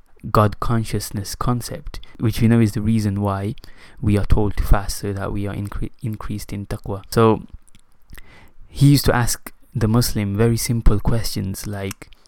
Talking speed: 160 wpm